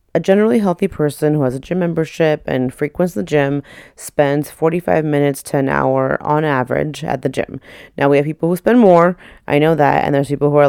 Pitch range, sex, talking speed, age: 145-180 Hz, female, 220 wpm, 30-49